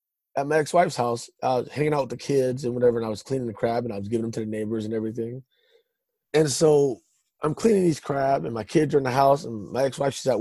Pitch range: 120-155 Hz